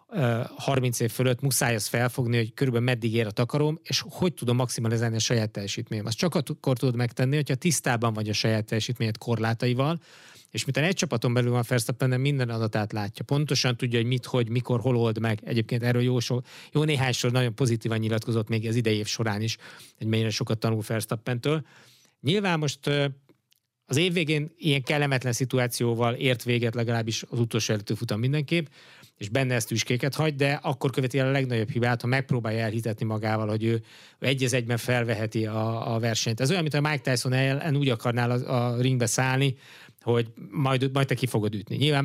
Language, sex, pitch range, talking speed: Hungarian, male, 115-140 Hz, 185 wpm